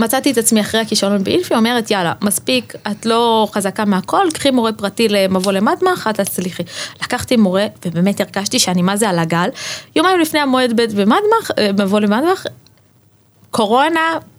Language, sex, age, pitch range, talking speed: Hebrew, female, 20-39, 205-260 Hz, 155 wpm